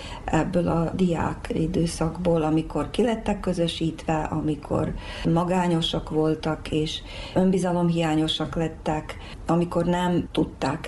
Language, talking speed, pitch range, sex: Hungarian, 90 wpm, 155-175 Hz, female